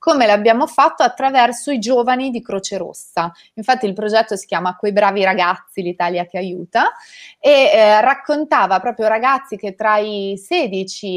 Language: Italian